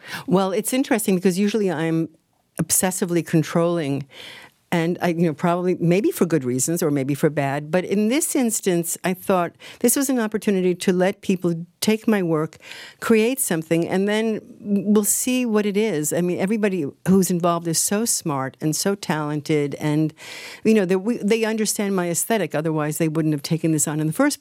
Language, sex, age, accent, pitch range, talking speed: English, female, 50-69, American, 150-200 Hz, 180 wpm